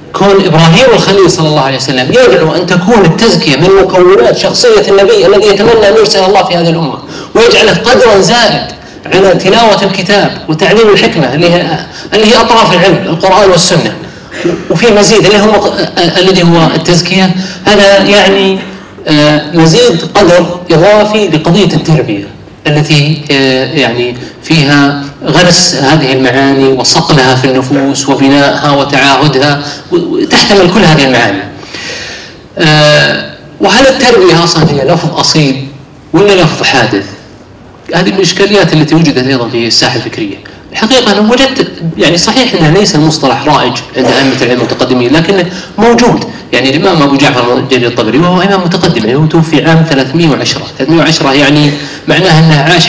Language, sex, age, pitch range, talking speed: Arabic, male, 30-49, 150-190 Hz, 135 wpm